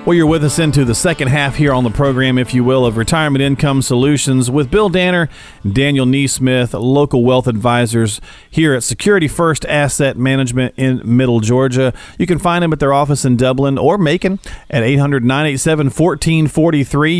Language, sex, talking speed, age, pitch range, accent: English, male, 170 wpm, 40-59, 115-155 Hz, American